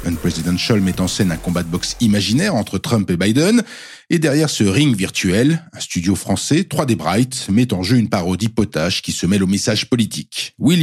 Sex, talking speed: male, 200 wpm